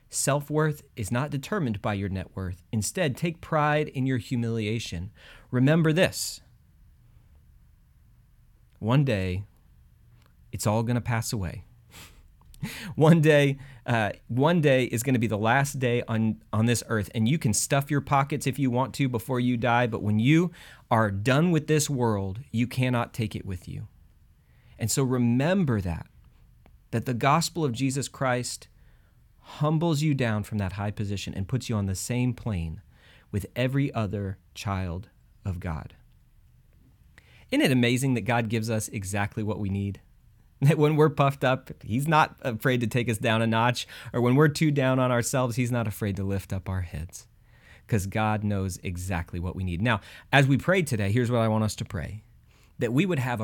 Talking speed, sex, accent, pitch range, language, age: 180 wpm, male, American, 100-135 Hz, English, 30-49